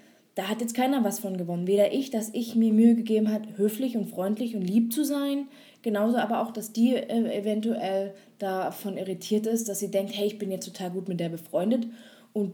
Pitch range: 195-230 Hz